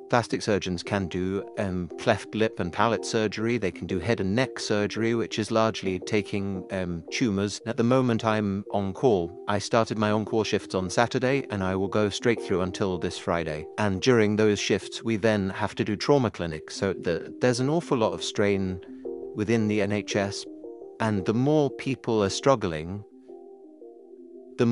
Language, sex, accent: English, male, British